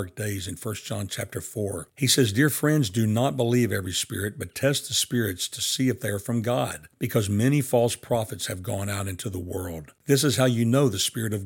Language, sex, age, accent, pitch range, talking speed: English, male, 60-79, American, 100-125 Hz, 230 wpm